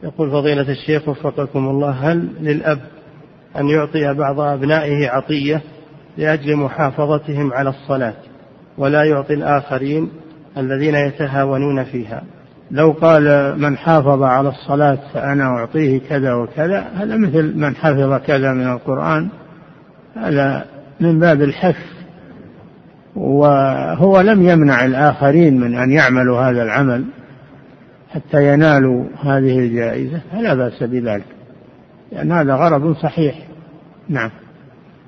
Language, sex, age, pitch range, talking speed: Arabic, male, 50-69, 135-155 Hz, 110 wpm